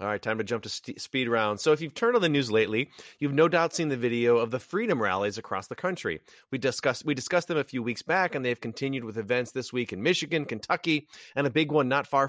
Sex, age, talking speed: male, 30-49, 265 wpm